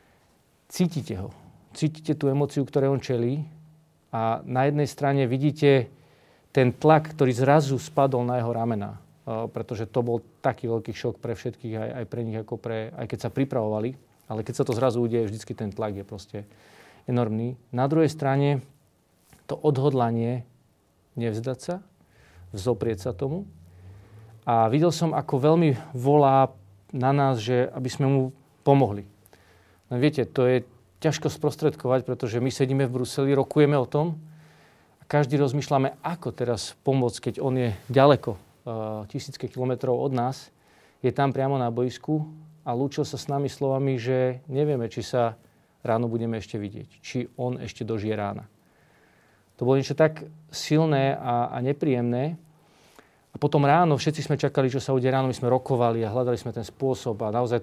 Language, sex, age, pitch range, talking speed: Slovak, male, 40-59, 115-140 Hz, 160 wpm